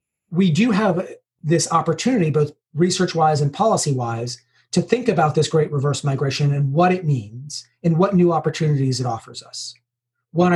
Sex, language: male, English